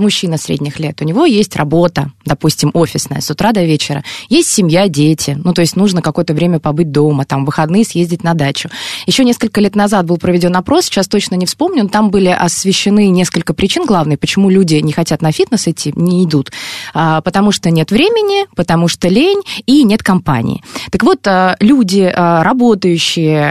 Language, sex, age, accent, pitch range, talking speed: Russian, female, 20-39, native, 165-220 Hz, 180 wpm